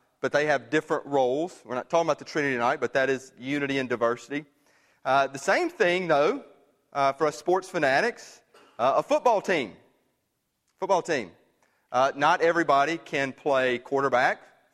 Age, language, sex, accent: 30-49, English, male, American